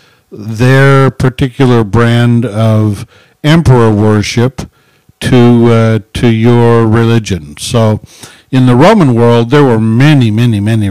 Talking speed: 115 wpm